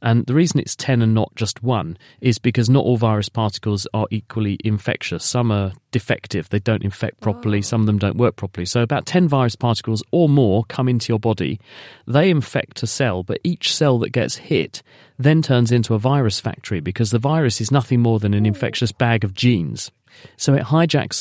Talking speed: 205 wpm